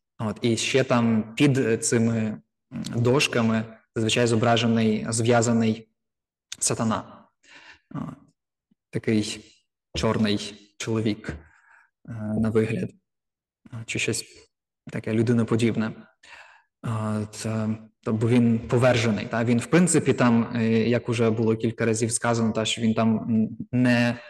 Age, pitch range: 20-39, 110-125 Hz